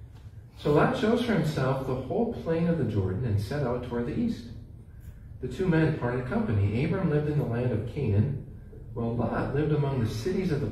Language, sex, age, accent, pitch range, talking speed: English, male, 40-59, American, 105-140 Hz, 205 wpm